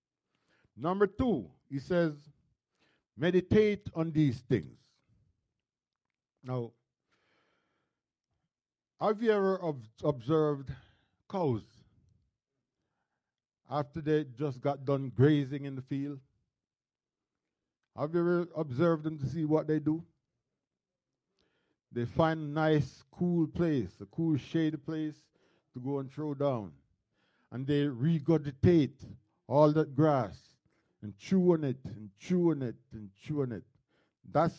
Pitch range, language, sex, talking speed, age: 130-165 Hz, English, male, 115 wpm, 60-79